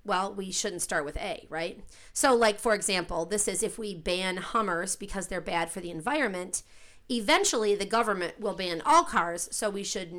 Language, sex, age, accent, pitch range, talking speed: English, female, 40-59, American, 180-235 Hz, 195 wpm